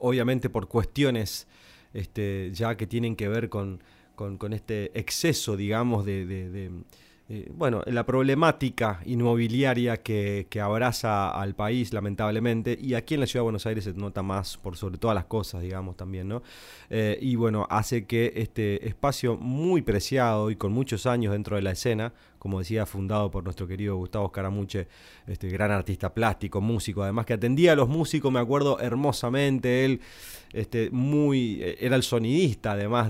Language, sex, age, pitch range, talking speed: Spanish, male, 30-49, 100-120 Hz, 165 wpm